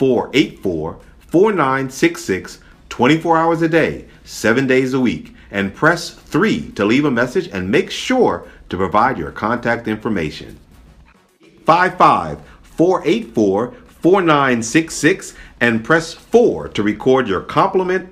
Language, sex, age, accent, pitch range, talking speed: English, male, 50-69, American, 110-170 Hz, 115 wpm